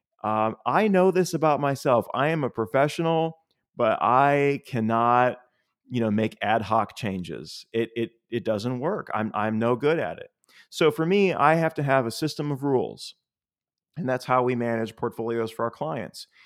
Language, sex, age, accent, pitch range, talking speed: English, male, 30-49, American, 110-145 Hz, 180 wpm